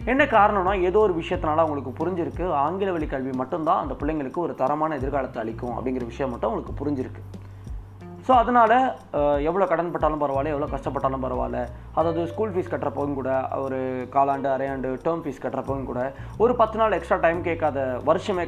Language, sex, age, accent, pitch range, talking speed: Tamil, male, 20-39, native, 130-180 Hz, 160 wpm